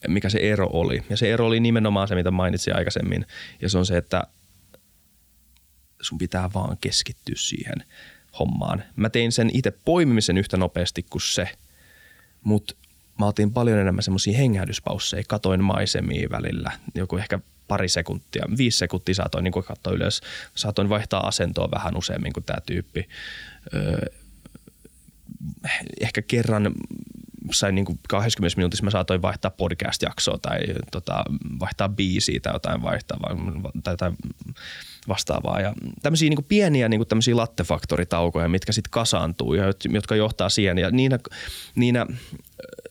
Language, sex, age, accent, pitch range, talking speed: Finnish, male, 20-39, native, 90-110 Hz, 130 wpm